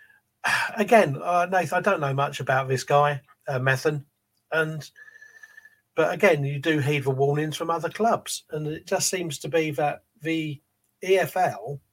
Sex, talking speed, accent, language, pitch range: male, 160 wpm, British, English, 135-180 Hz